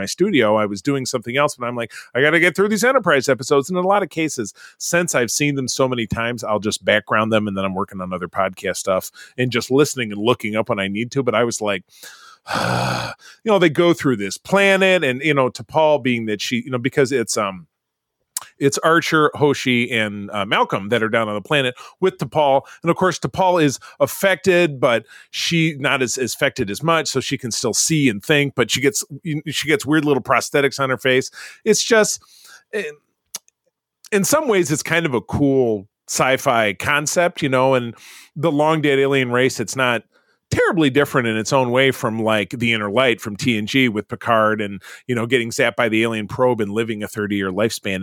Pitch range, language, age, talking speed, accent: 110-155 Hz, English, 30-49, 215 wpm, American